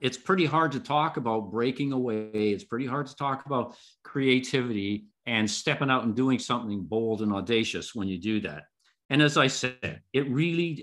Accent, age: American, 50-69